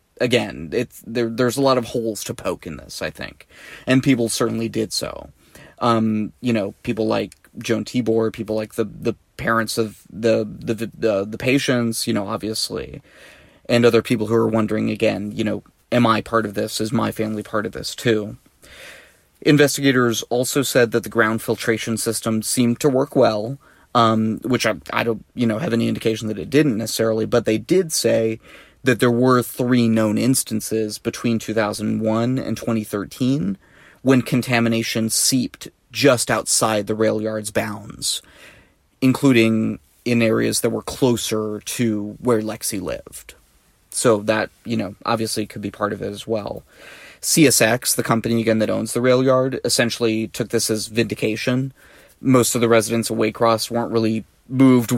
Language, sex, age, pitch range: English, male, 20-39, 110-120 Hz